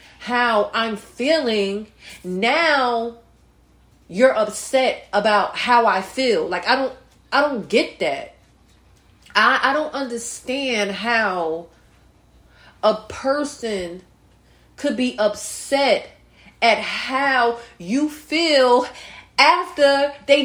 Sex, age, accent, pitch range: female, 30-49, American, 210-270 Hz